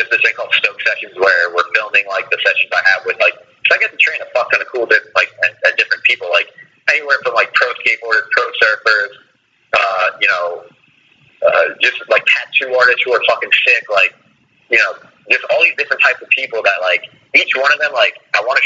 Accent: American